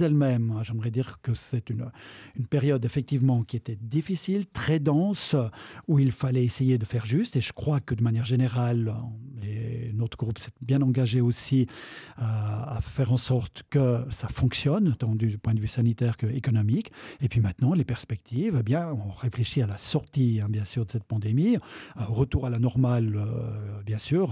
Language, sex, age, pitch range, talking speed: French, male, 50-69, 110-130 Hz, 190 wpm